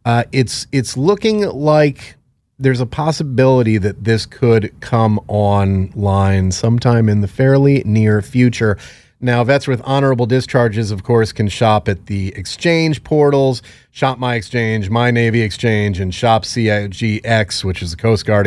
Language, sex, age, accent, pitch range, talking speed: English, male, 30-49, American, 100-130 Hz, 150 wpm